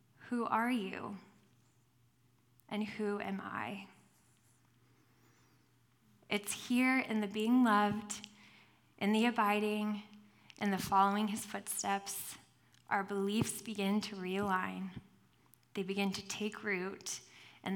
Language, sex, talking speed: English, female, 110 wpm